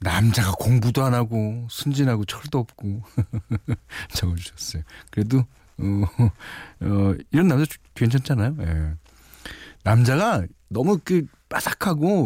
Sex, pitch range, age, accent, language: male, 95-130 Hz, 40-59, native, Korean